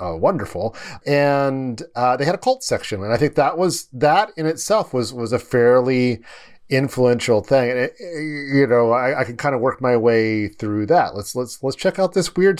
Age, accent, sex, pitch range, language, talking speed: 40-59, American, male, 110-145 Hz, English, 215 wpm